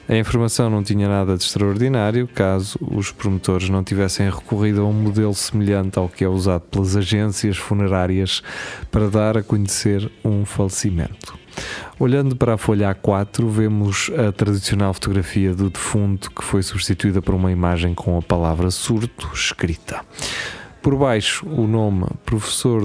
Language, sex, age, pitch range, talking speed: Portuguese, male, 20-39, 95-110 Hz, 150 wpm